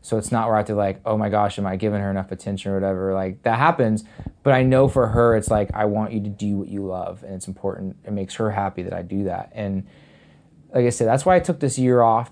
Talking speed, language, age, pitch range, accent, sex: 285 wpm, English, 20-39, 100-120 Hz, American, male